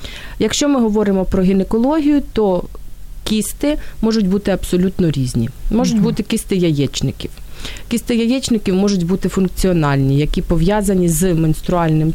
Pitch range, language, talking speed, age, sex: 170-220 Hz, Ukrainian, 120 wpm, 30-49, female